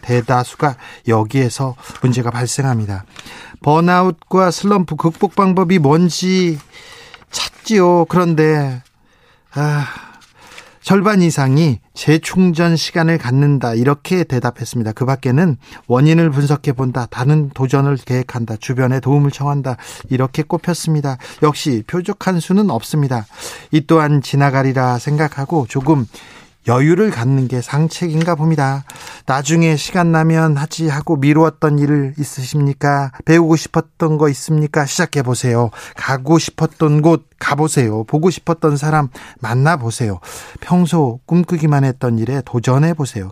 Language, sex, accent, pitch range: Korean, male, native, 130-165 Hz